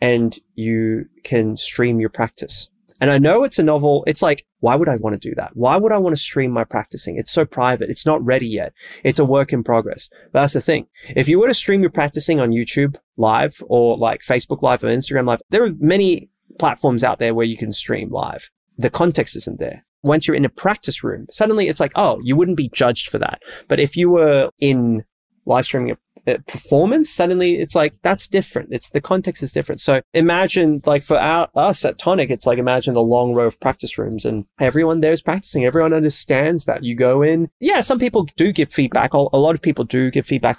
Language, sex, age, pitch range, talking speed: English, male, 20-39, 120-160 Hz, 225 wpm